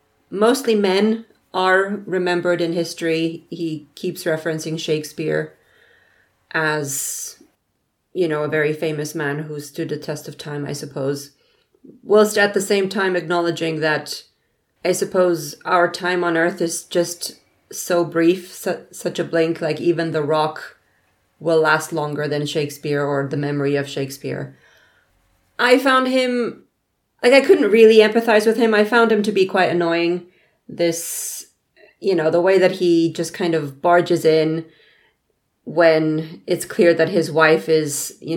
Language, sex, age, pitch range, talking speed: English, female, 30-49, 150-180 Hz, 150 wpm